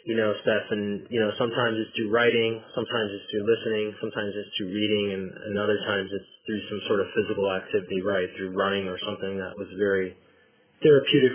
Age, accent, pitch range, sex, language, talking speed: 20-39, American, 100-115 Hz, male, English, 200 wpm